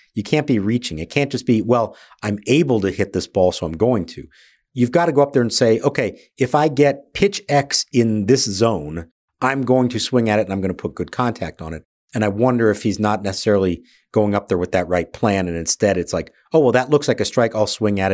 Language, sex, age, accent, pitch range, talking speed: English, male, 50-69, American, 100-135 Hz, 260 wpm